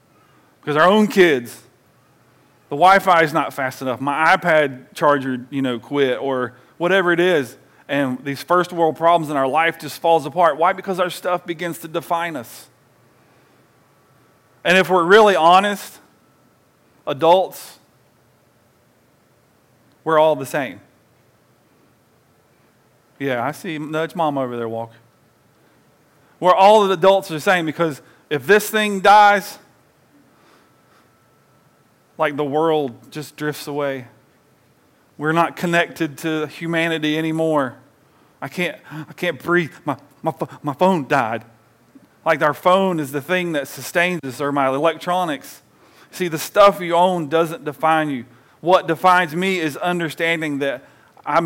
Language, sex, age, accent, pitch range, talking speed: English, male, 40-59, American, 140-175 Hz, 140 wpm